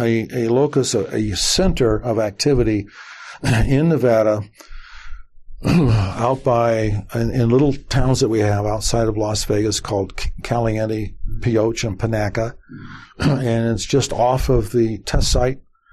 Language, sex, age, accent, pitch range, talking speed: English, male, 60-79, American, 105-130 Hz, 135 wpm